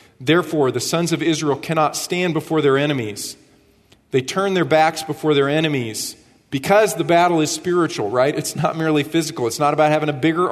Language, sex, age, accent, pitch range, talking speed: English, male, 40-59, American, 135-165 Hz, 190 wpm